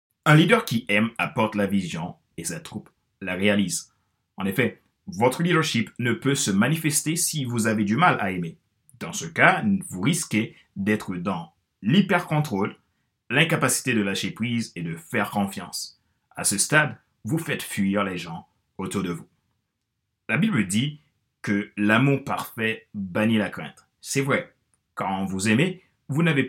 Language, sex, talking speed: French, male, 160 wpm